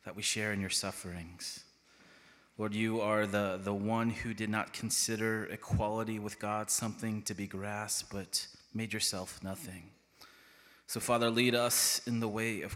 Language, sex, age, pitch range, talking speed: English, male, 20-39, 100-110 Hz, 165 wpm